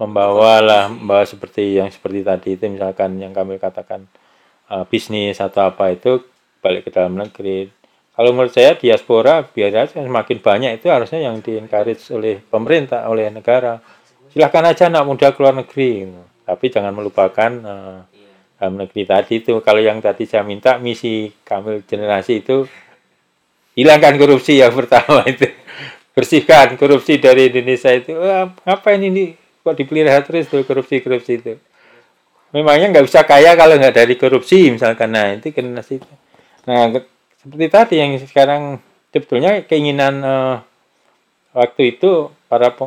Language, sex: Indonesian, male